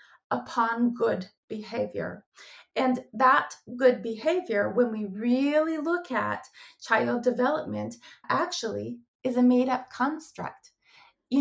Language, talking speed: English, 105 wpm